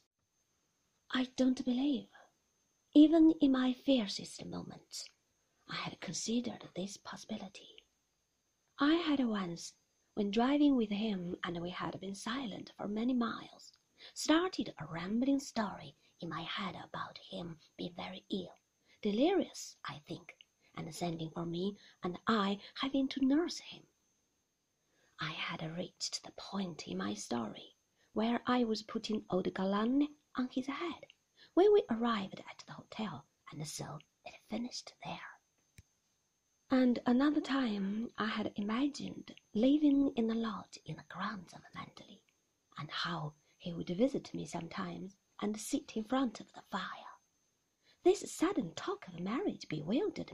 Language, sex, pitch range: Chinese, female, 185-275 Hz